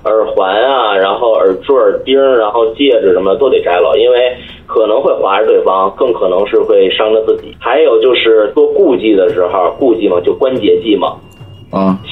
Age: 30-49